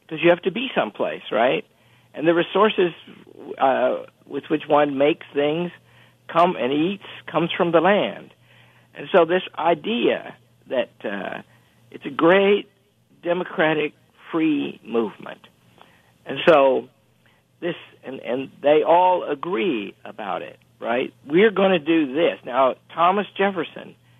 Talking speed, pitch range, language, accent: 135 wpm, 145-190 Hz, English, American